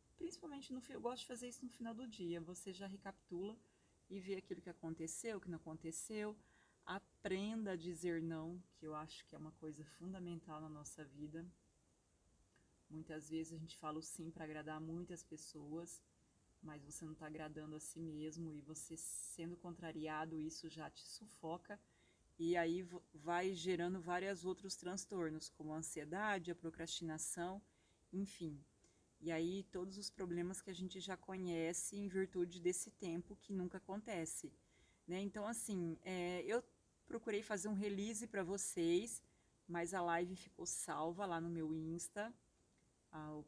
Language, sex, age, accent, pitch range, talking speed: Portuguese, female, 30-49, Brazilian, 160-190 Hz, 160 wpm